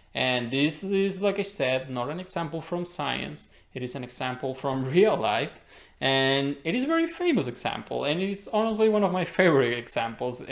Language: English